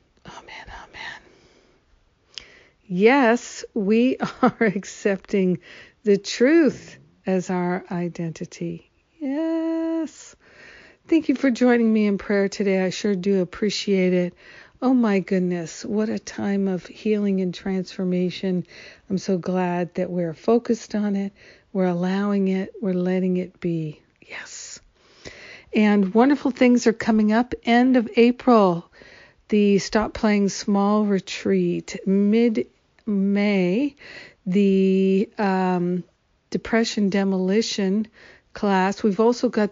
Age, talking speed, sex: 60-79, 110 wpm, female